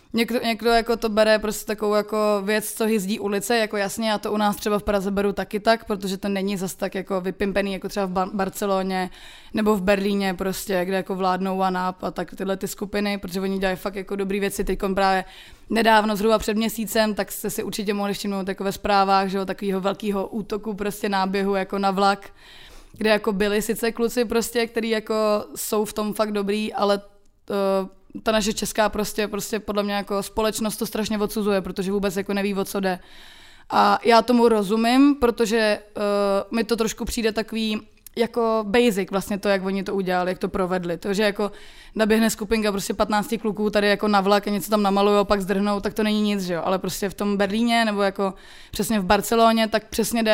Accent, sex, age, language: native, female, 20-39, Czech